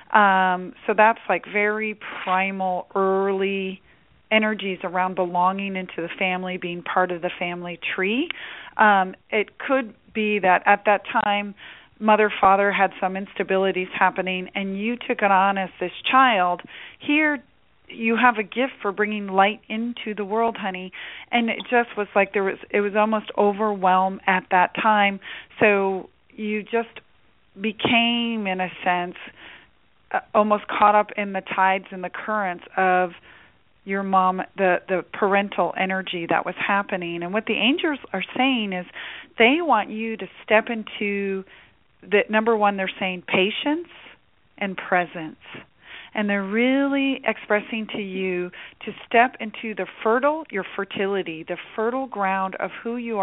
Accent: American